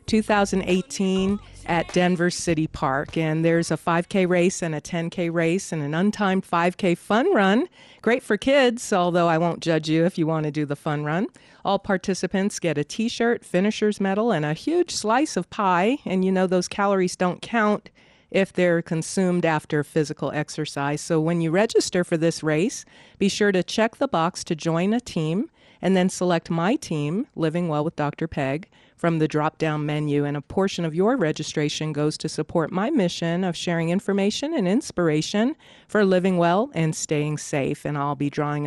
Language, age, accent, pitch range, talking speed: English, 50-69, American, 155-195 Hz, 185 wpm